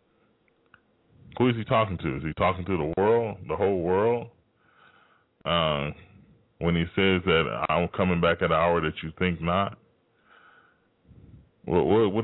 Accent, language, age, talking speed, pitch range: American, English, 10-29, 145 wpm, 85-100 Hz